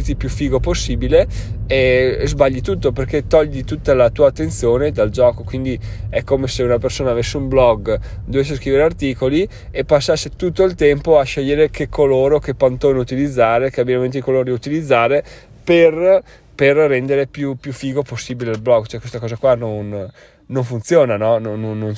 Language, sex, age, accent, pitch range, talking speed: Italian, male, 20-39, native, 115-140 Hz, 170 wpm